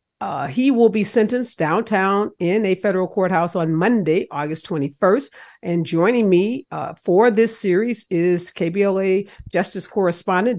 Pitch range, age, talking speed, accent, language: 165-215 Hz, 50-69, 140 wpm, American, English